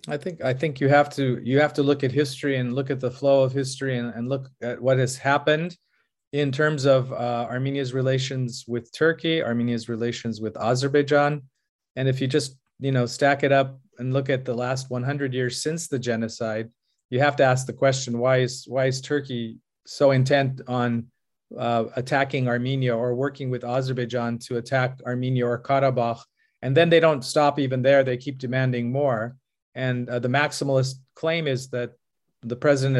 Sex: male